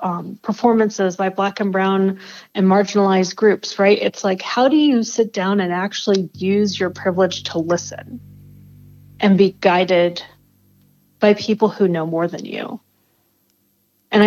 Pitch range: 180-210 Hz